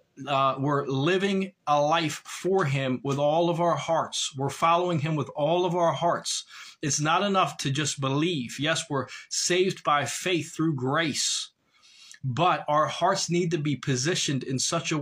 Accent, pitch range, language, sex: American, 135-175 Hz, English, male